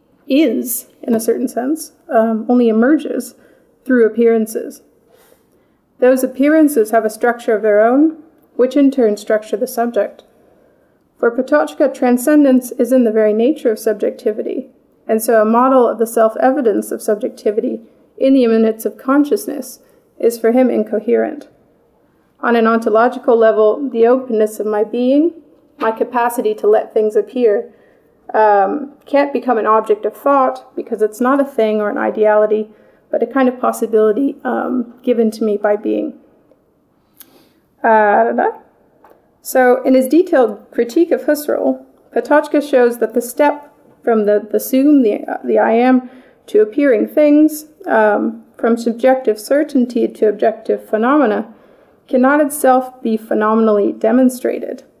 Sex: female